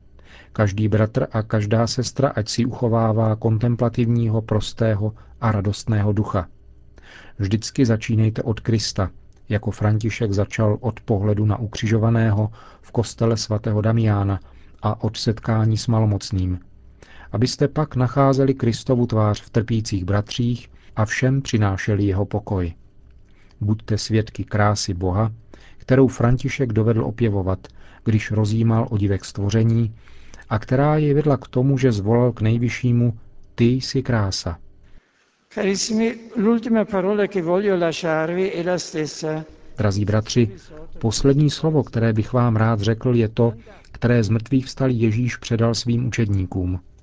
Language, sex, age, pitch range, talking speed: Czech, male, 40-59, 105-125 Hz, 115 wpm